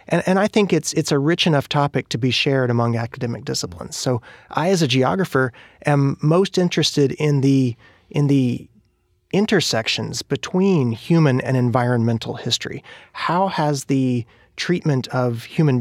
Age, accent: 30-49, American